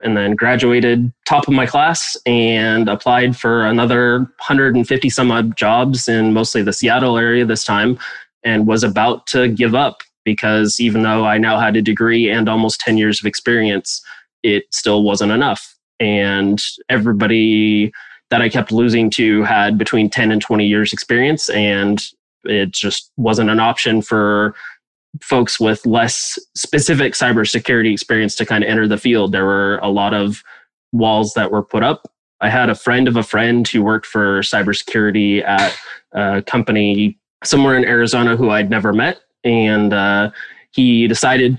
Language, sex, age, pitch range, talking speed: English, male, 20-39, 105-120 Hz, 165 wpm